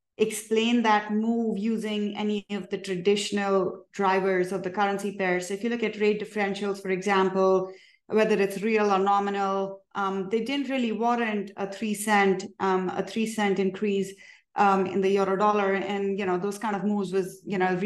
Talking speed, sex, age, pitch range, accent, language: 185 wpm, female, 30-49, 195-215 Hz, Indian, English